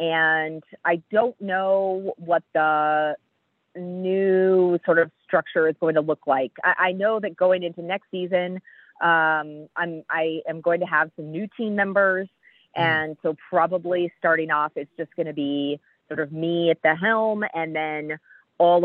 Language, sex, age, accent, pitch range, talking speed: English, female, 30-49, American, 155-190 Hz, 160 wpm